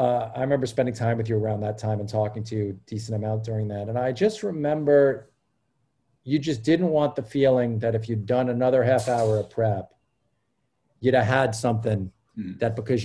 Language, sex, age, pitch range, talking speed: English, male, 40-59, 115-155 Hz, 200 wpm